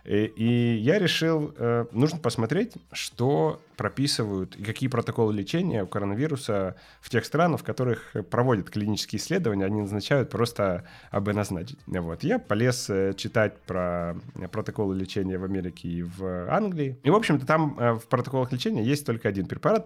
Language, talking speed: Ukrainian, 150 wpm